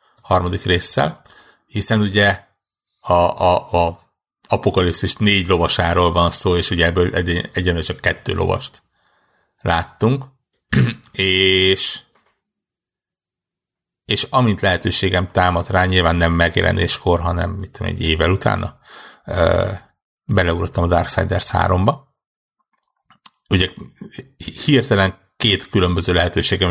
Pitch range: 90-110 Hz